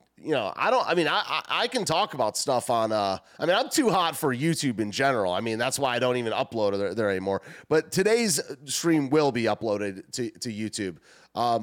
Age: 30-49